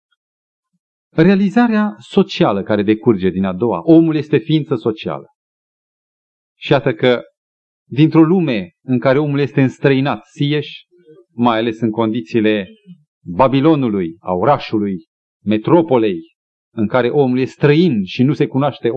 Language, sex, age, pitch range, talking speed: Romanian, male, 40-59, 115-180 Hz, 125 wpm